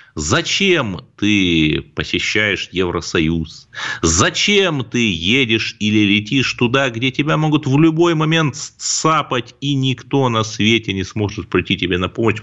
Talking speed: 130 wpm